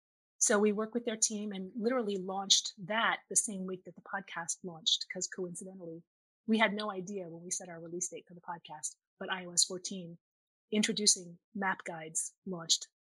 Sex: female